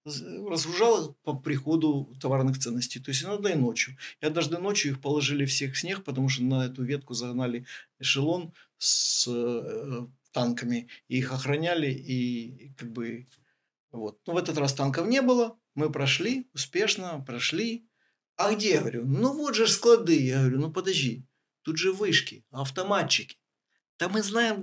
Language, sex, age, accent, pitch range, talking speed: Russian, male, 50-69, native, 125-175 Hz, 155 wpm